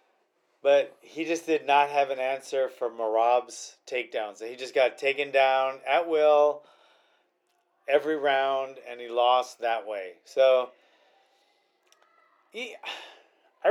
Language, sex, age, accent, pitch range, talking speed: English, male, 30-49, American, 125-155 Hz, 120 wpm